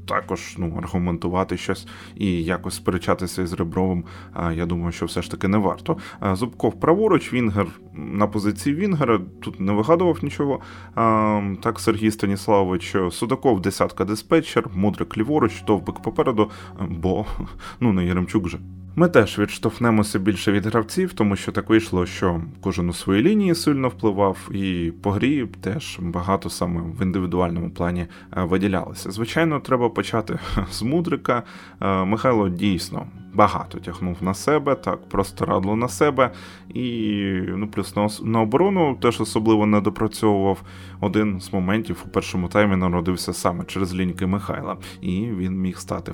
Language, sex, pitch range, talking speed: Ukrainian, male, 90-115 Hz, 145 wpm